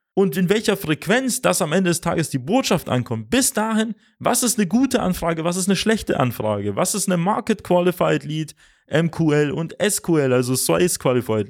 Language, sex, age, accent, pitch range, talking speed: German, male, 30-49, German, 155-210 Hz, 190 wpm